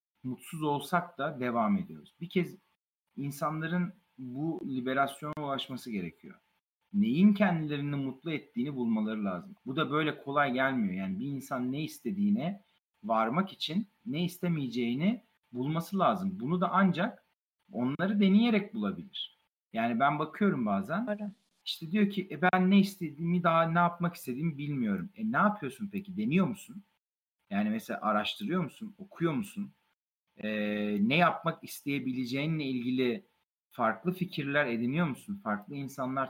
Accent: native